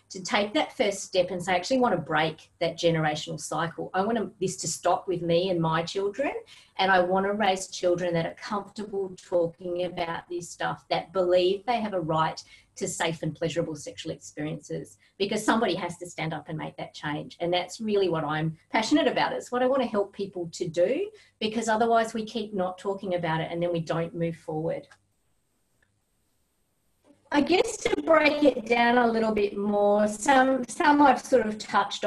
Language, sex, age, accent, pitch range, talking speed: English, female, 40-59, Australian, 170-230 Hz, 200 wpm